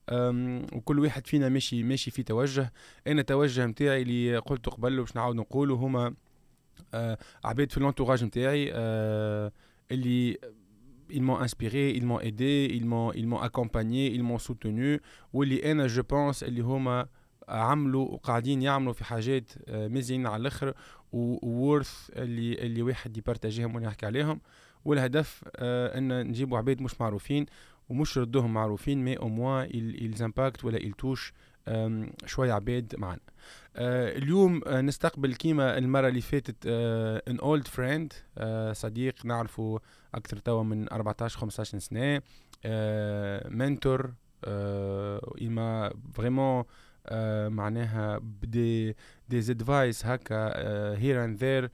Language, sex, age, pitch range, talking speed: Arabic, male, 20-39, 115-135 Hz, 120 wpm